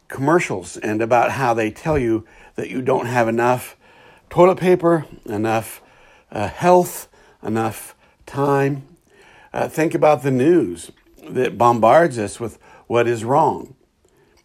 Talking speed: 130 wpm